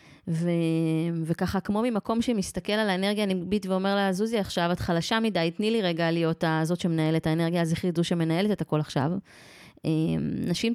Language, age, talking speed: Hebrew, 20-39, 165 wpm